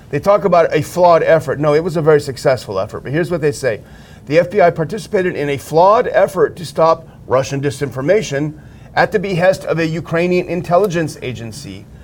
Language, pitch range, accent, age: English, 135-170 Hz, American, 40-59